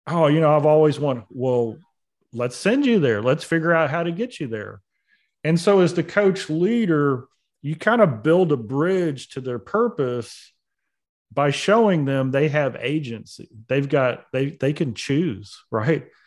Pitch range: 125-165 Hz